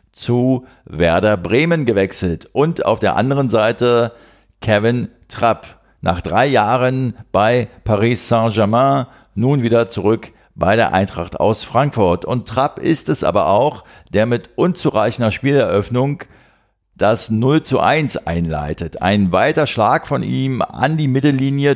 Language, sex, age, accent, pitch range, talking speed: German, male, 50-69, German, 100-125 Hz, 130 wpm